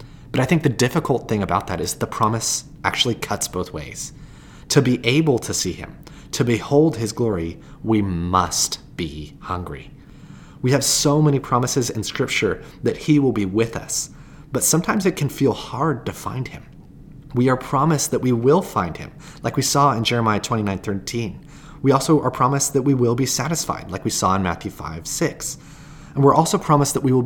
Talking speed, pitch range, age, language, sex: 195 wpm, 110-145 Hz, 30-49, English, male